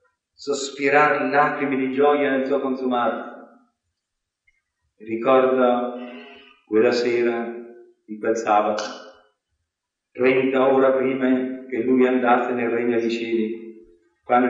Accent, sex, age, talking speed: native, male, 50-69, 105 wpm